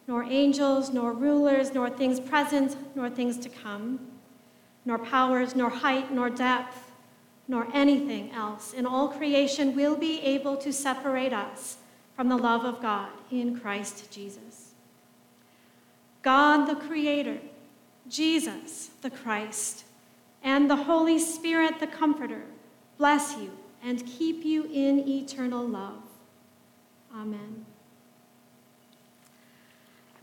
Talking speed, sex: 115 wpm, female